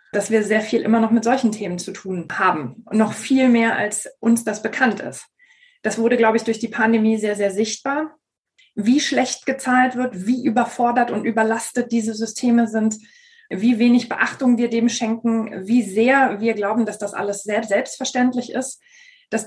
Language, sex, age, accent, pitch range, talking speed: German, female, 20-39, German, 215-255 Hz, 175 wpm